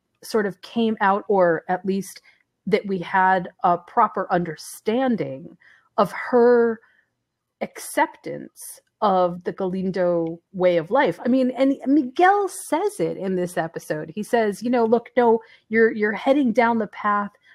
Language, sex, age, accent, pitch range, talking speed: English, female, 30-49, American, 175-235 Hz, 145 wpm